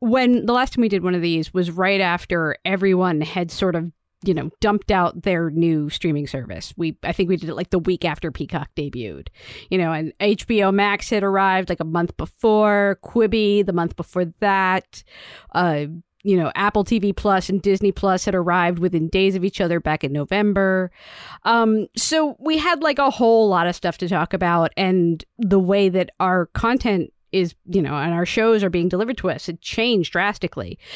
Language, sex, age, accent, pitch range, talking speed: English, female, 40-59, American, 175-225 Hz, 200 wpm